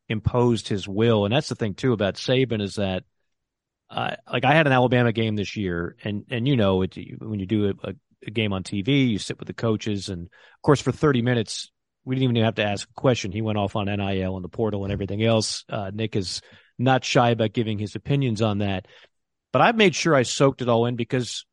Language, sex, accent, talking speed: English, male, American, 235 wpm